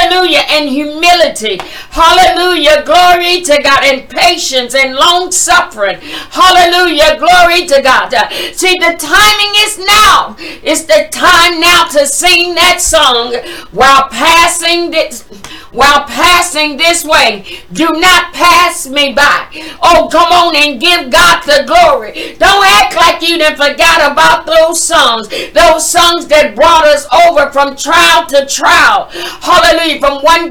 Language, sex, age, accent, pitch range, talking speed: English, female, 50-69, American, 290-340 Hz, 140 wpm